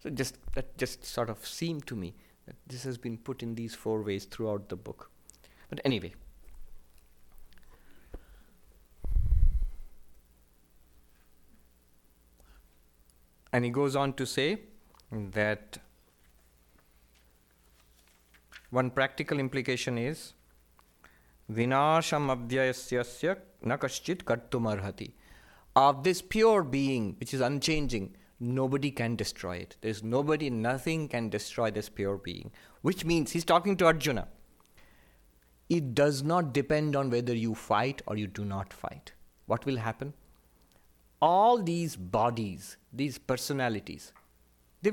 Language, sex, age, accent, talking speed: English, male, 50-69, Indian, 110 wpm